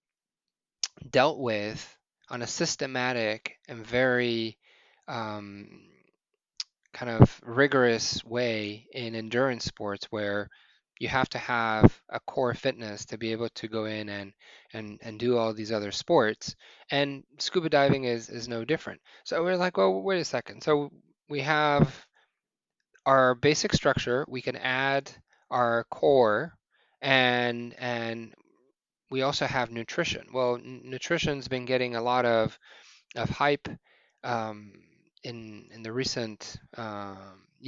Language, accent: English, American